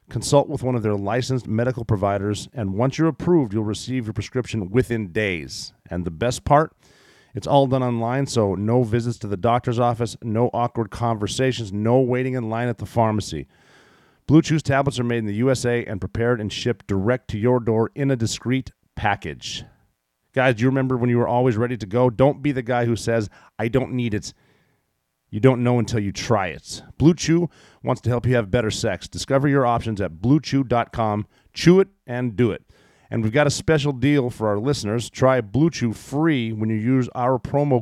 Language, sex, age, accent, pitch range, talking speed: English, male, 40-59, American, 110-130 Hz, 205 wpm